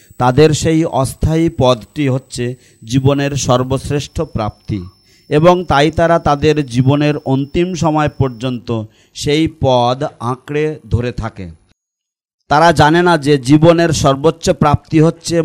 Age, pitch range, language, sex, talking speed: 40-59, 130-160 Hz, English, male, 115 wpm